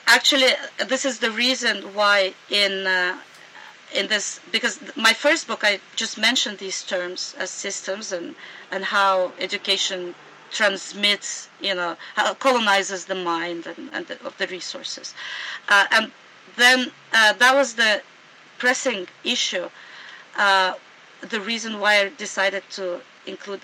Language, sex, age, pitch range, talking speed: English, female, 40-59, 190-245 Hz, 140 wpm